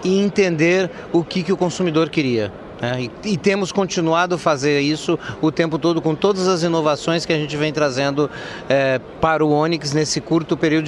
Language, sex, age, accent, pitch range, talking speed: Portuguese, male, 30-49, Brazilian, 150-190 Hz, 180 wpm